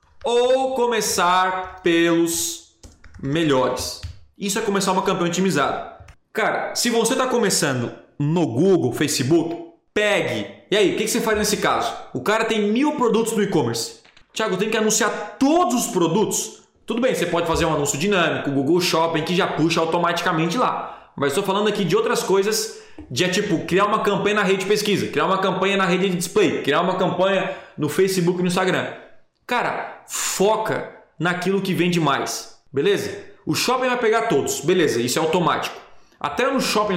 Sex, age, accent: male, 20-39, Brazilian